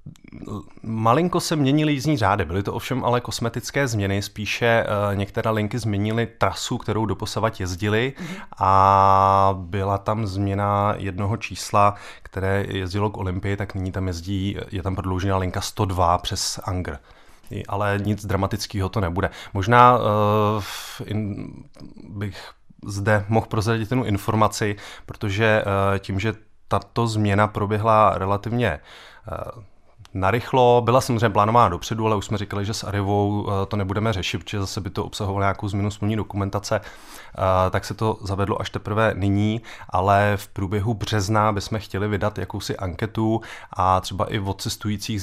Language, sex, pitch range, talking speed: Czech, male, 100-110 Hz, 145 wpm